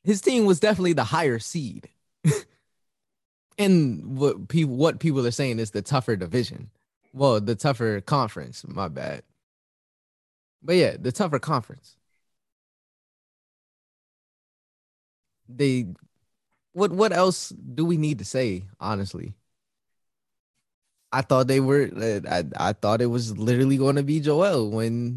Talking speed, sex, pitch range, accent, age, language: 130 wpm, male, 105-140 Hz, American, 20-39, English